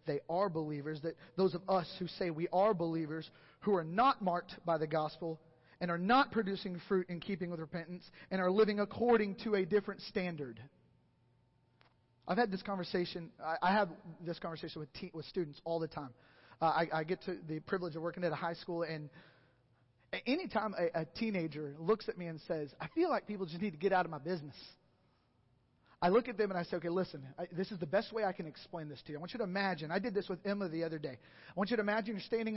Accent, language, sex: American, English, male